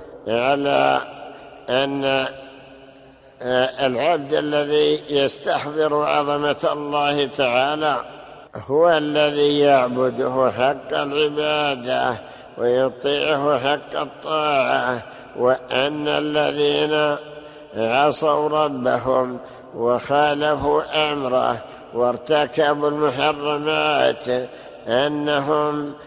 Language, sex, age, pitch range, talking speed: Arabic, male, 60-79, 135-150 Hz, 60 wpm